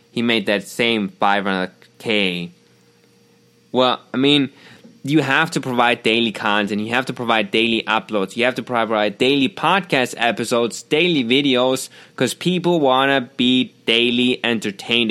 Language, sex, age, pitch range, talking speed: English, male, 20-39, 110-145 Hz, 150 wpm